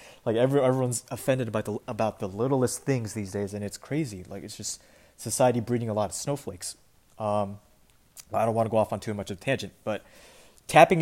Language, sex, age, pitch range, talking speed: English, male, 20-39, 105-130 Hz, 205 wpm